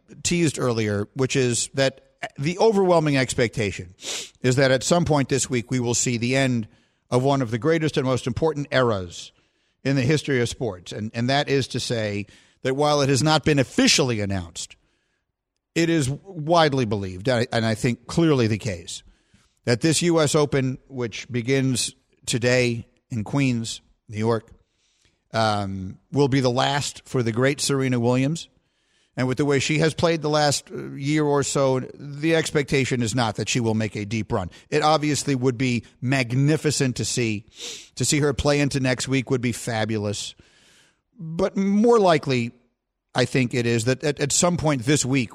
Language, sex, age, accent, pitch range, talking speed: English, male, 50-69, American, 115-150 Hz, 175 wpm